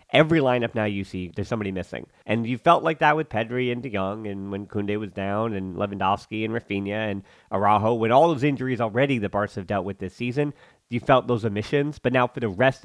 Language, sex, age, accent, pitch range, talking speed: English, male, 30-49, American, 105-135 Hz, 235 wpm